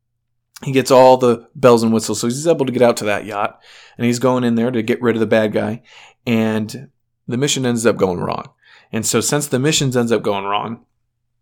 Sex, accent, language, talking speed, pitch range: male, American, English, 230 wpm, 115-130 Hz